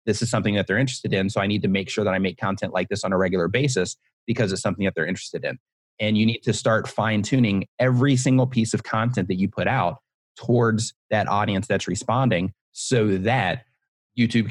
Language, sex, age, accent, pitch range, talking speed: English, male, 30-49, American, 100-125 Hz, 220 wpm